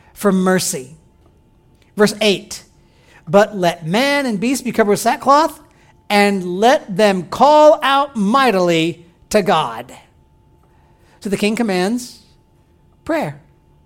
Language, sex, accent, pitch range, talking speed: English, male, American, 175-240 Hz, 115 wpm